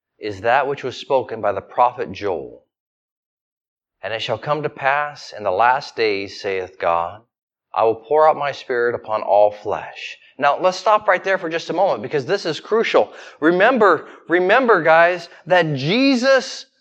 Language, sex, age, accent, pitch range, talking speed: English, male, 30-49, American, 150-205 Hz, 170 wpm